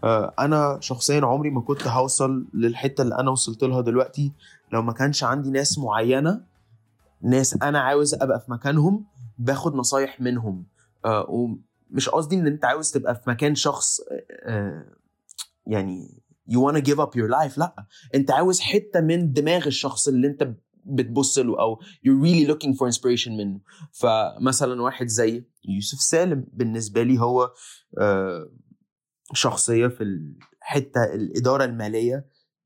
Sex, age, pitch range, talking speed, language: male, 20-39, 115-145 Hz, 140 wpm, Arabic